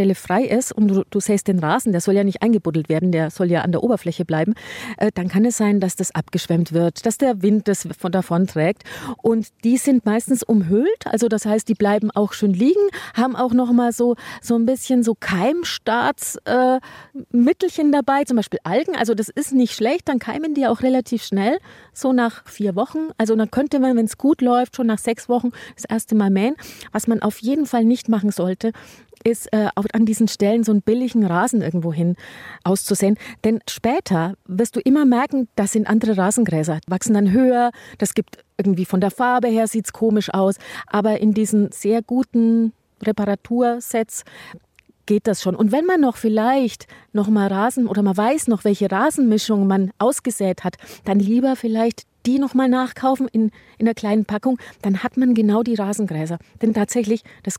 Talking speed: 190 wpm